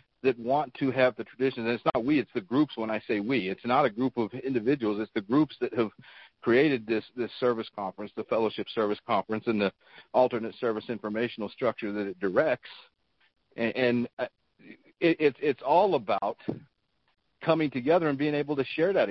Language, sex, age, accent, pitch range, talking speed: English, male, 50-69, American, 120-145 Hz, 190 wpm